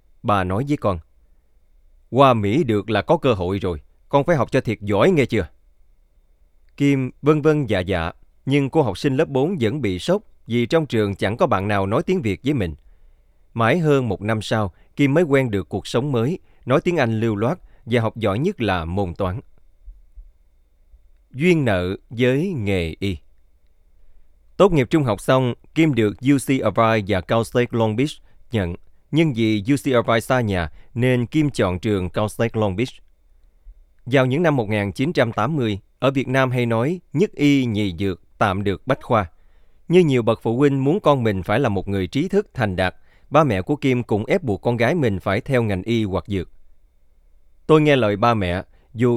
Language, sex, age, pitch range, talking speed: Vietnamese, male, 20-39, 90-135 Hz, 190 wpm